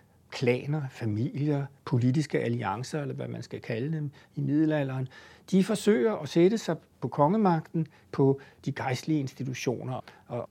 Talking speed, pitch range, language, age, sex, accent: 135 wpm, 125-155 Hz, Danish, 60-79, male, native